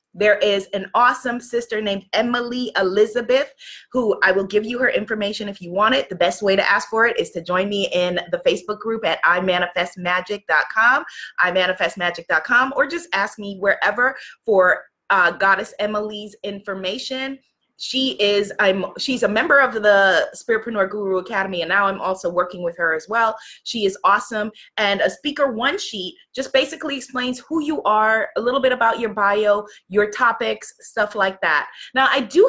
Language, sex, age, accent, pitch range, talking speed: English, female, 20-39, American, 190-255 Hz, 175 wpm